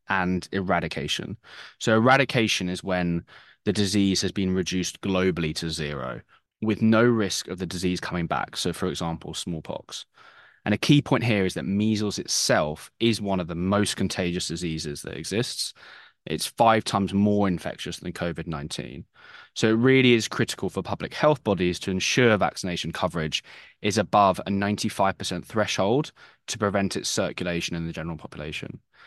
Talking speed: 160 wpm